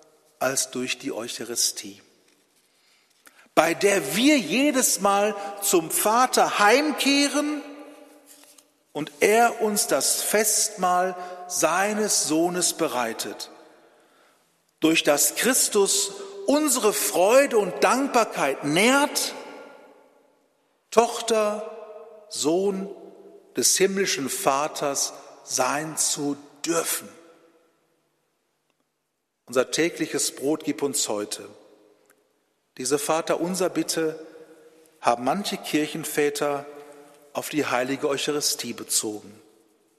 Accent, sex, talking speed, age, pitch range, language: German, male, 80 wpm, 50-69, 140-215 Hz, German